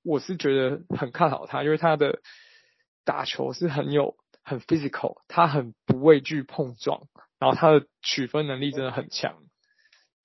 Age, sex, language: 20-39, male, Chinese